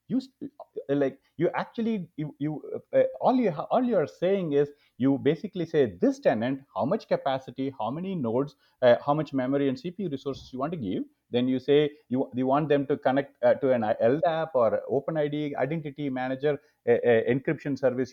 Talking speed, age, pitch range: 180 wpm, 30-49, 135-195 Hz